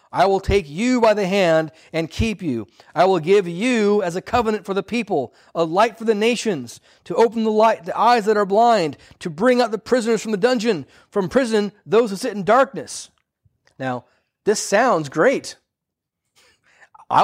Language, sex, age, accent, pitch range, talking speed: English, male, 40-59, American, 135-210 Hz, 185 wpm